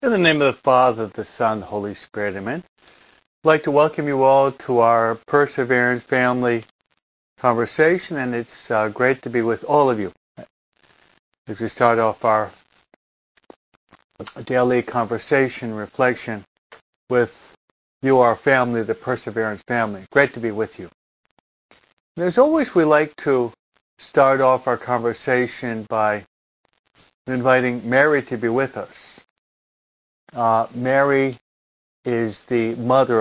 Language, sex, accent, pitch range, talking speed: English, male, American, 110-135 Hz, 135 wpm